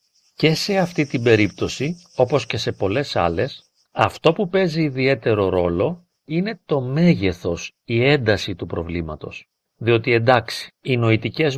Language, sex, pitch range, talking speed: Greek, male, 105-165 Hz, 135 wpm